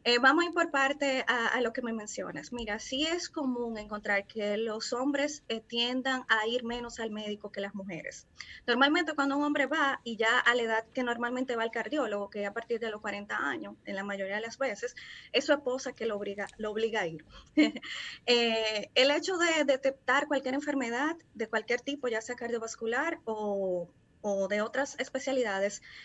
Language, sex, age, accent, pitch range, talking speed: Spanish, female, 20-39, American, 215-270 Hz, 200 wpm